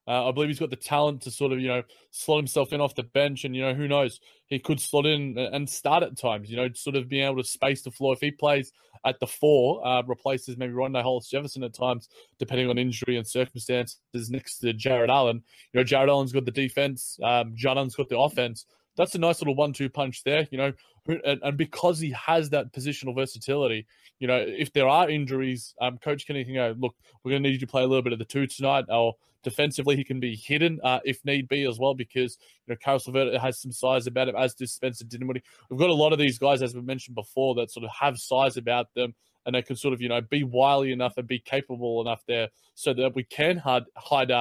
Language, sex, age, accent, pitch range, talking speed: English, male, 20-39, Australian, 125-145 Hz, 245 wpm